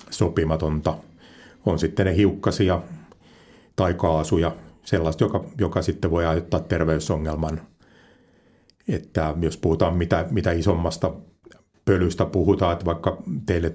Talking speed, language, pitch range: 110 wpm, Finnish, 80-90 Hz